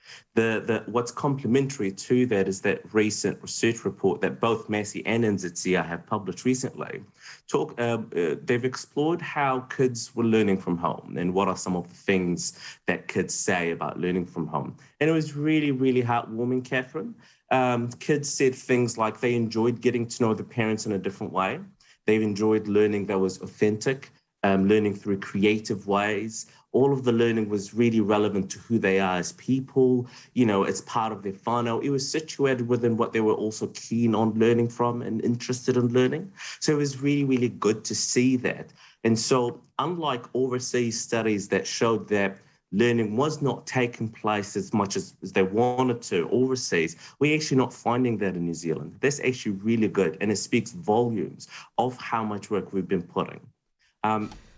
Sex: male